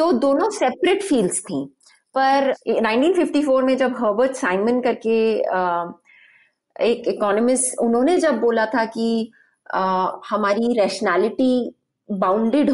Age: 30-49